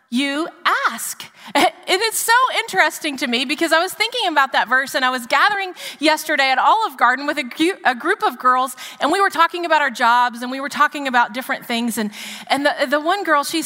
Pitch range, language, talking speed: 285-355 Hz, English, 210 wpm